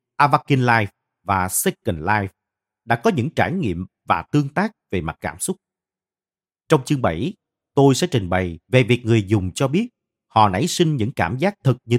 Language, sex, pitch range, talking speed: Vietnamese, male, 105-155 Hz, 190 wpm